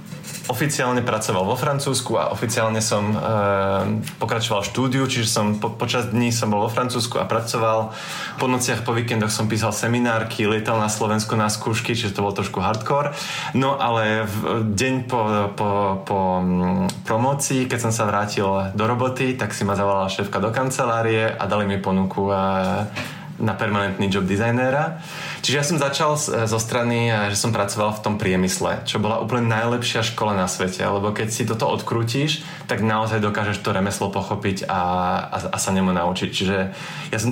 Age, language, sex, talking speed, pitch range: 20-39, Slovak, male, 175 wpm, 100-120 Hz